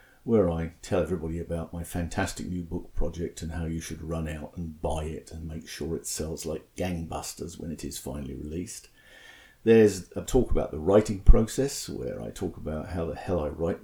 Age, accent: 50-69, British